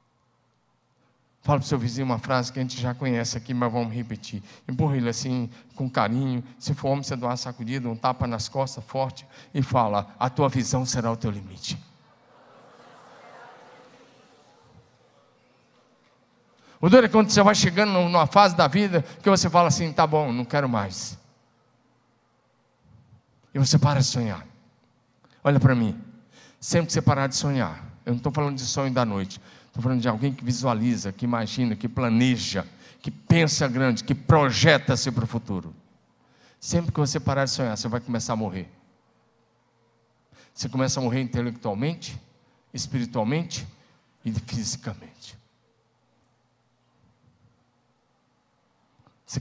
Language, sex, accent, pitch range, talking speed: Portuguese, male, Brazilian, 115-135 Hz, 145 wpm